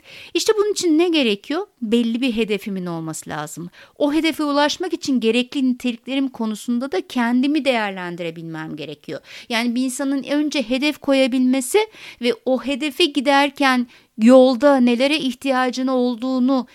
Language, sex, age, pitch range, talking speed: Turkish, female, 60-79, 200-285 Hz, 125 wpm